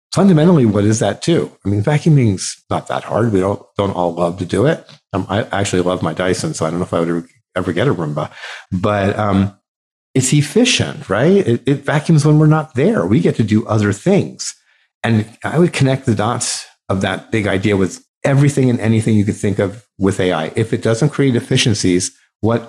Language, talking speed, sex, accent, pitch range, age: English, 210 wpm, male, American, 95-130 Hz, 50-69